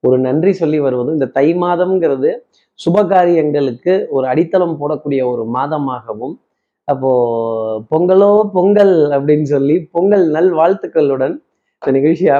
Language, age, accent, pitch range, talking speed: Tamil, 30-49, native, 135-185 Hz, 110 wpm